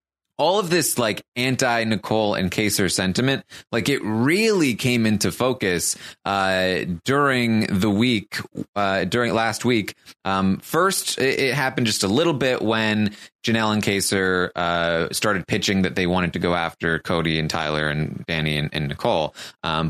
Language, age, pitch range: English, 20-39, 95-120 Hz